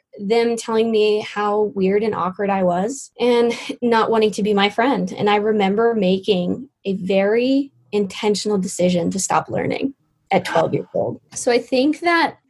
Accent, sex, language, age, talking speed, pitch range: American, female, English, 20-39, 170 wpm, 190-230 Hz